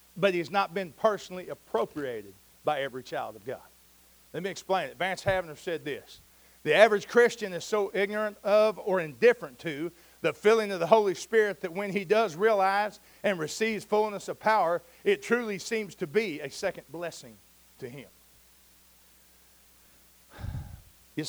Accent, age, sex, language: American, 50-69, male, English